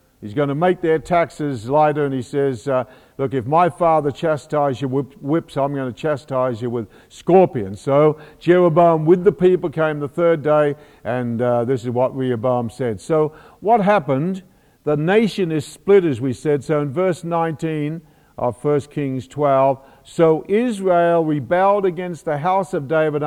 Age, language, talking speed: 50-69, English, 175 wpm